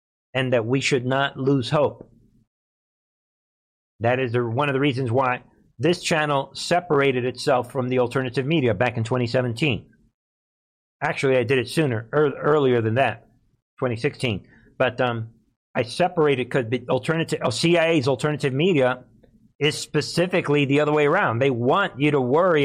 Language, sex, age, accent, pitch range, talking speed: English, male, 50-69, American, 125-155 Hz, 145 wpm